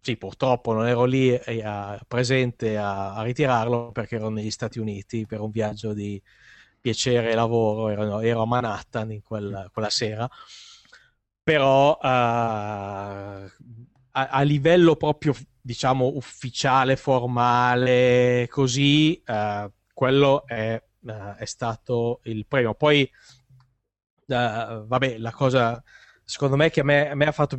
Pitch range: 110-135 Hz